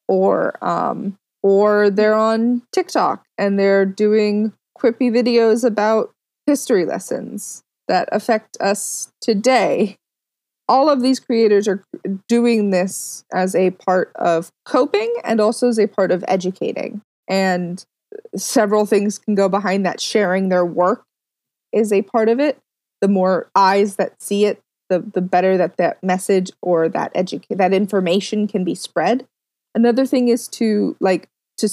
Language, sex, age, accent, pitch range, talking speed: English, female, 20-39, American, 190-240 Hz, 150 wpm